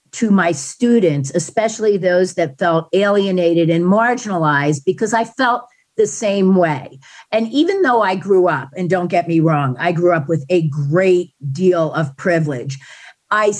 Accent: American